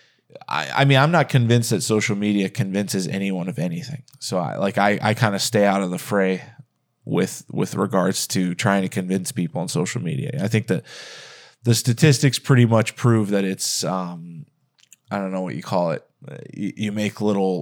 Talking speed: 195 wpm